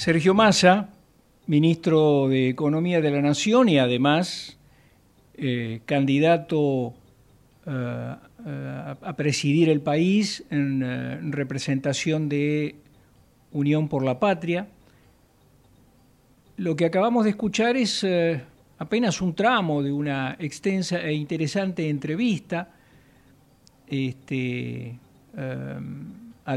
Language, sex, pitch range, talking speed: Spanish, male, 135-185 Hz, 90 wpm